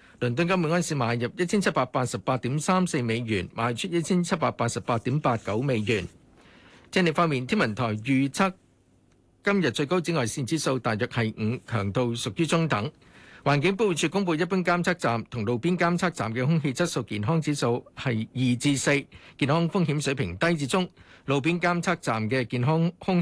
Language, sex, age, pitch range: Chinese, male, 50-69, 120-170 Hz